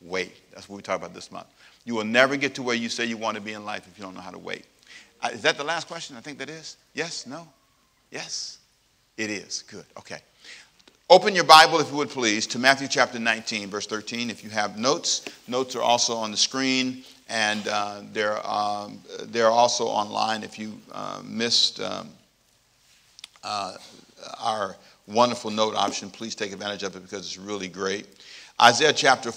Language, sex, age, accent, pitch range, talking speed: English, male, 50-69, American, 105-135 Hz, 200 wpm